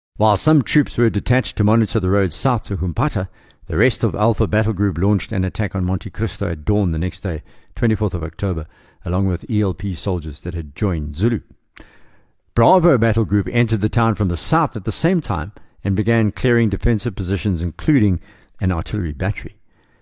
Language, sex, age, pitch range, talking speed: English, male, 60-79, 90-115 Hz, 185 wpm